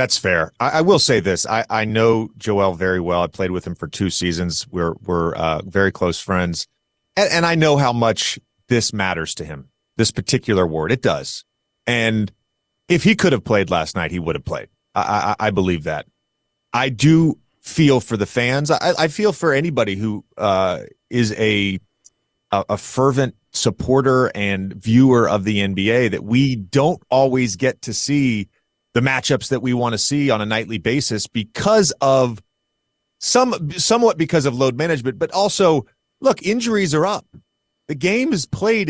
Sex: male